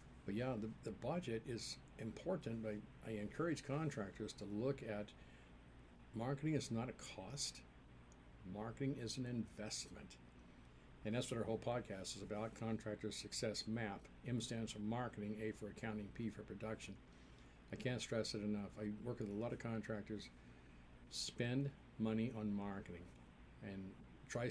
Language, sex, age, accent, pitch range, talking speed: English, male, 50-69, American, 90-115 Hz, 155 wpm